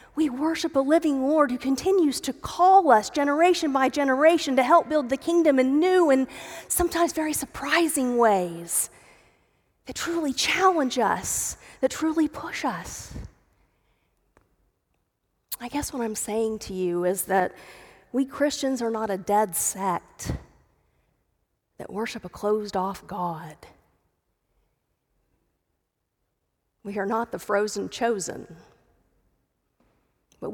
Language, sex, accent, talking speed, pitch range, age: English, female, American, 120 wpm, 195-275 Hz, 40-59